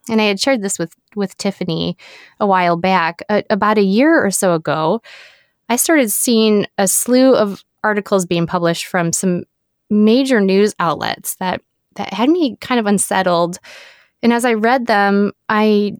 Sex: female